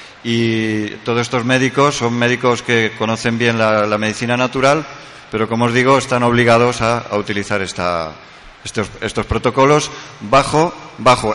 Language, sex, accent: Spanish, male, Spanish